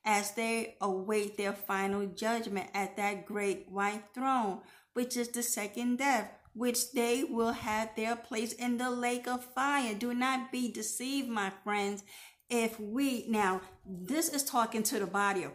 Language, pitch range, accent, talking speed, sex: English, 200-245 Hz, American, 165 wpm, female